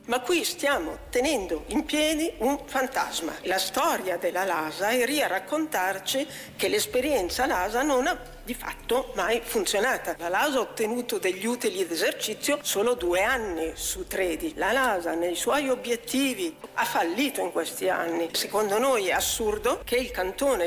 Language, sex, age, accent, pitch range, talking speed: Italian, female, 50-69, native, 210-315 Hz, 155 wpm